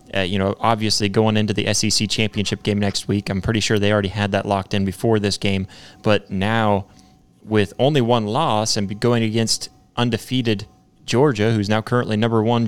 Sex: male